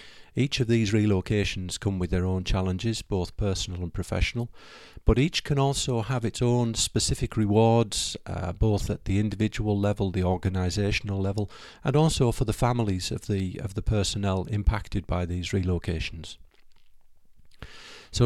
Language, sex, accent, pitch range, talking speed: English, male, British, 90-110 Hz, 150 wpm